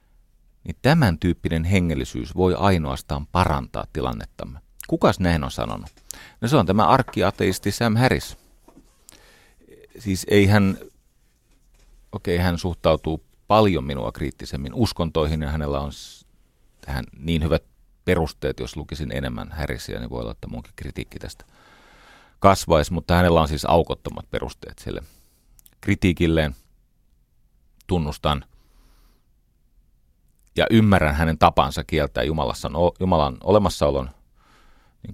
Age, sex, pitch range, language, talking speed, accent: 40-59, male, 70-95 Hz, Finnish, 115 wpm, native